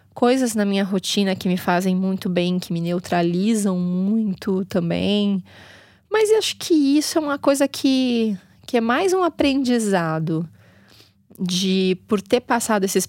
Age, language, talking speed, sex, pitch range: 20-39, Portuguese, 150 wpm, female, 170-215 Hz